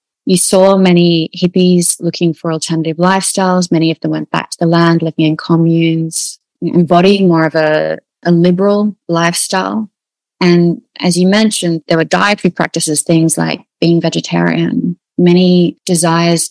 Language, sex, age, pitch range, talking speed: English, female, 20-39, 165-180 Hz, 145 wpm